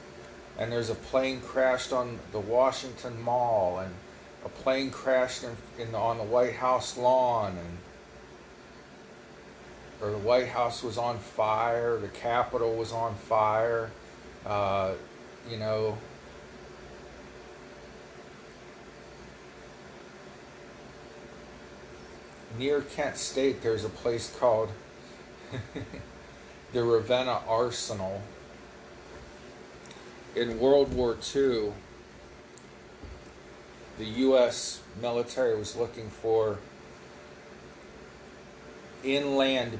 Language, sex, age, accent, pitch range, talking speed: English, male, 40-59, American, 95-120 Hz, 85 wpm